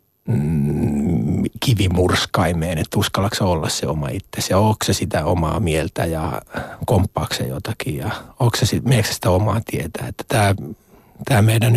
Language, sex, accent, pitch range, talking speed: Finnish, male, native, 105-125 Hz, 140 wpm